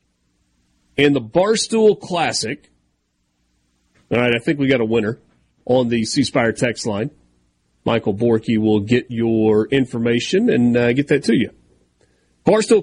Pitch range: 115-180 Hz